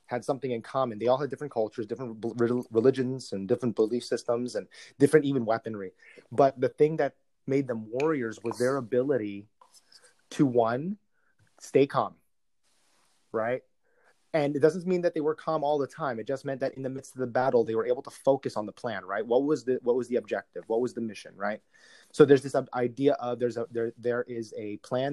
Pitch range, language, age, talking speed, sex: 115-140 Hz, English, 30-49, 215 wpm, male